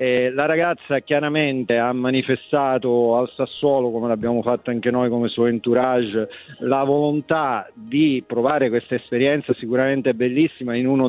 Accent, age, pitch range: native, 40-59, 125-140 Hz